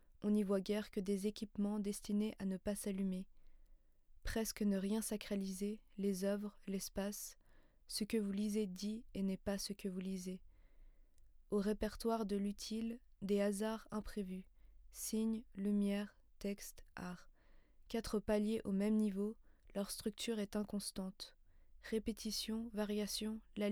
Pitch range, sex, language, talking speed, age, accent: 200-215 Hz, female, French, 135 wpm, 20-39, French